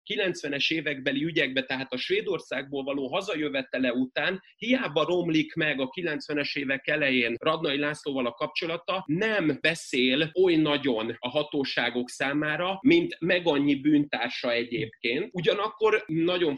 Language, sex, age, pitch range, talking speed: Hungarian, male, 30-49, 140-180 Hz, 125 wpm